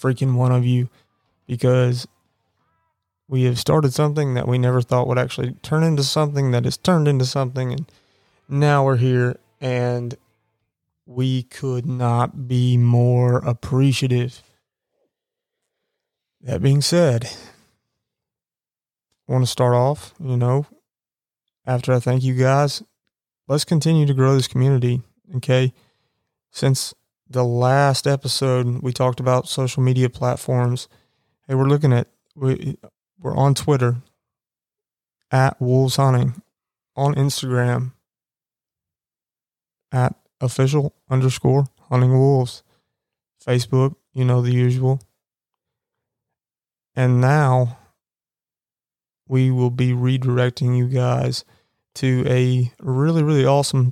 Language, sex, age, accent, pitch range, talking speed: English, male, 20-39, American, 125-140 Hz, 115 wpm